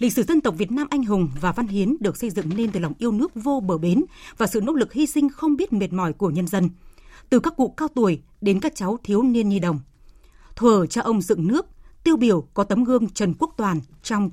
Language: Vietnamese